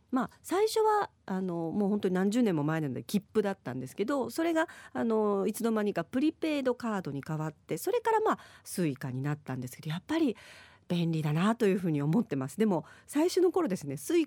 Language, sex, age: Japanese, female, 40-59